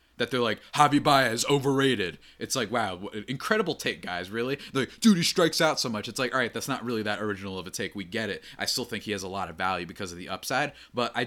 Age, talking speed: 20-39, 270 wpm